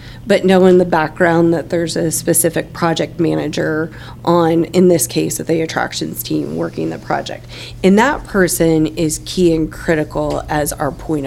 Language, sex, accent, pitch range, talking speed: English, female, American, 155-175 Hz, 165 wpm